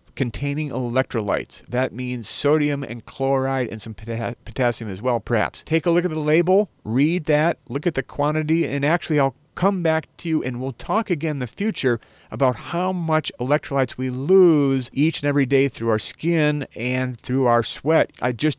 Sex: male